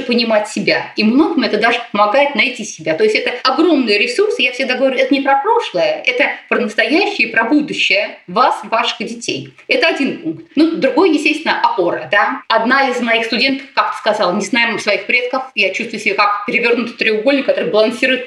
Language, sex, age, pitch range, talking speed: Russian, female, 30-49, 215-310 Hz, 180 wpm